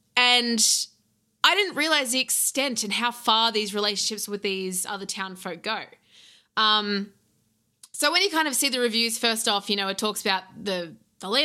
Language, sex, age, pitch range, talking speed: English, female, 20-39, 195-250 Hz, 190 wpm